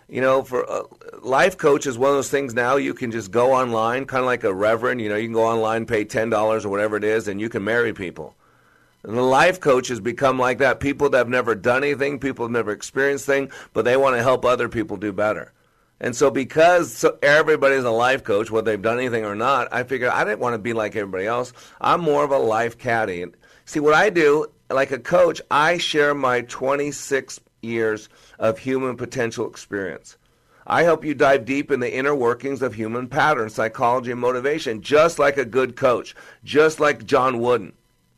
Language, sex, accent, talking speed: English, male, American, 220 wpm